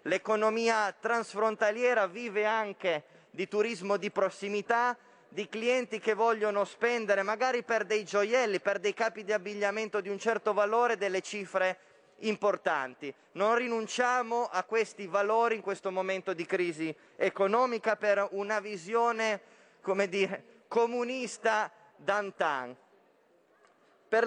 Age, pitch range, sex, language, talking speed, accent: 30-49, 185-220 Hz, male, Italian, 120 wpm, native